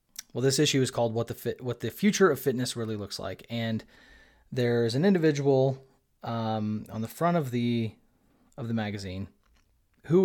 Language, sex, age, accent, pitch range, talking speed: English, male, 30-49, American, 110-130 Hz, 175 wpm